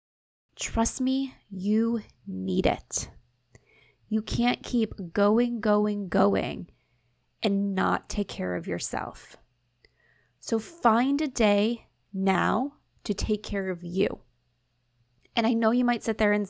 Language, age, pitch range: English, 20-39, 185-225 Hz